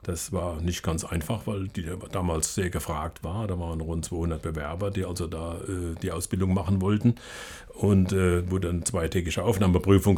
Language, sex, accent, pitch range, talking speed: German, male, German, 85-100 Hz, 175 wpm